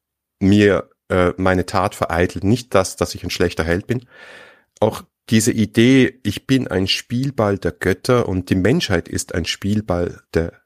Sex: male